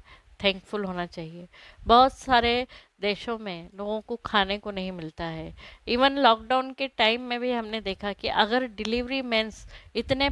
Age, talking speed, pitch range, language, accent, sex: 20-39, 155 wpm, 195-260 Hz, Hindi, native, female